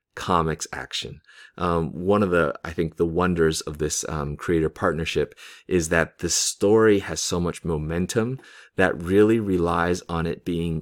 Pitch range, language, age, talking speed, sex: 80-95 Hz, English, 30-49, 160 wpm, male